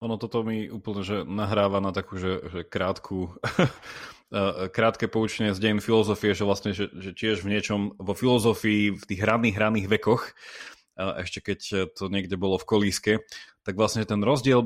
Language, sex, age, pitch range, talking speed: Slovak, male, 30-49, 95-110 Hz, 170 wpm